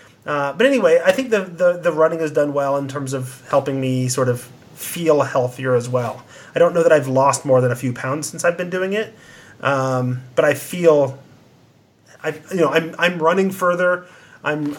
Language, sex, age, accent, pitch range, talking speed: English, male, 30-49, American, 130-165 Hz, 205 wpm